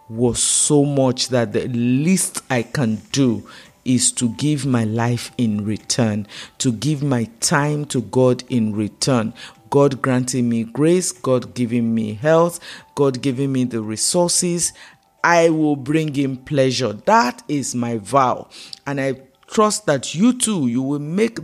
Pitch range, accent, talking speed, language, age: 125-160 Hz, Nigerian, 155 wpm, English, 50-69